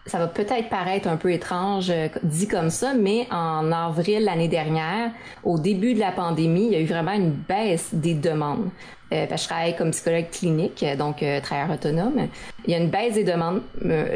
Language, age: French, 30-49